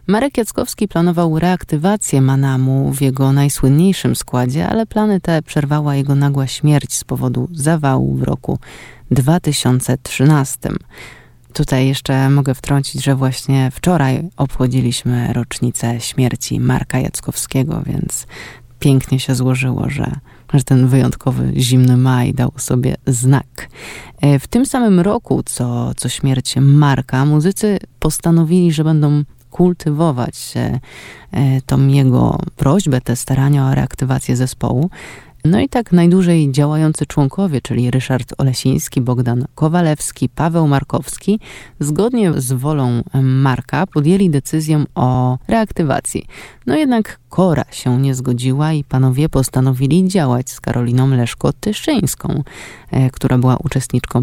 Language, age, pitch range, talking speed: Polish, 20-39, 130-155 Hz, 115 wpm